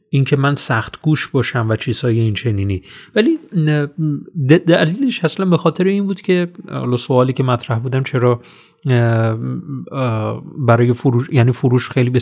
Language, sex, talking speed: Persian, male, 145 wpm